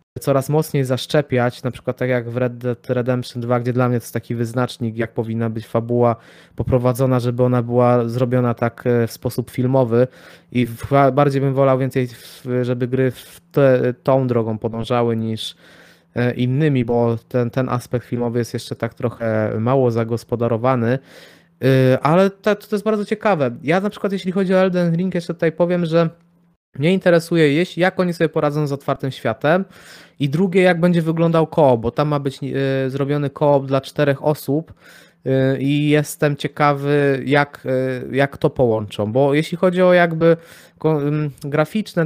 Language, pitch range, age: Polish, 125-155 Hz, 20-39